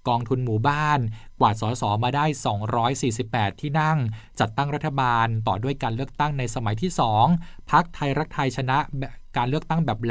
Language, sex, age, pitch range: Thai, male, 20-39, 110-135 Hz